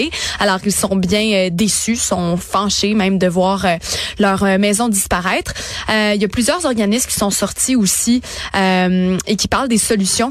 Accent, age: Canadian, 20-39